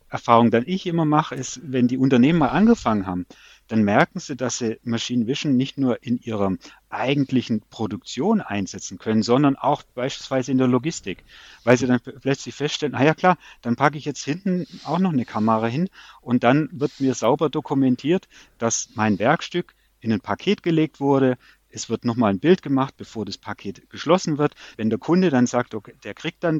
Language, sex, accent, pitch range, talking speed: German, male, German, 115-145 Hz, 190 wpm